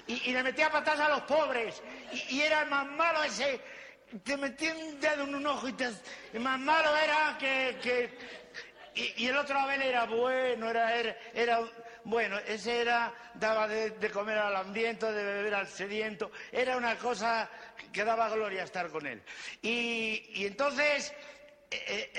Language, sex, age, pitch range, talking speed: English, male, 50-69, 215-280 Hz, 180 wpm